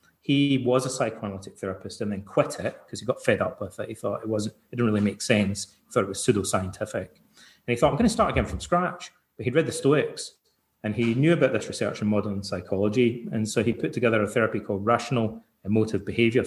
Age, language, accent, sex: 30-49, English, British, male